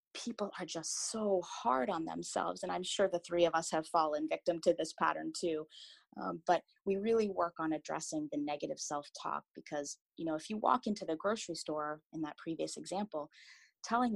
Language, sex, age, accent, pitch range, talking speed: English, female, 20-39, American, 150-190 Hz, 195 wpm